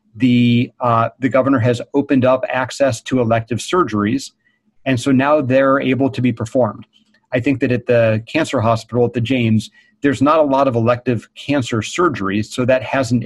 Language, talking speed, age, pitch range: English, 180 wpm, 40-59, 110-130 Hz